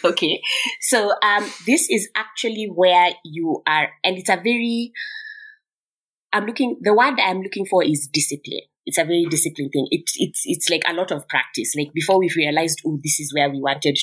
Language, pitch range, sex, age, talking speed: English, 150-205 Hz, female, 20-39, 190 wpm